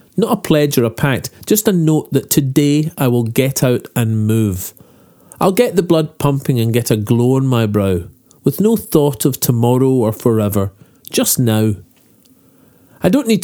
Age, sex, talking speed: 40-59, male, 185 wpm